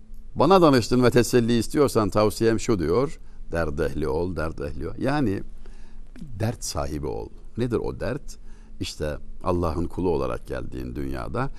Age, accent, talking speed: 60-79, native, 130 wpm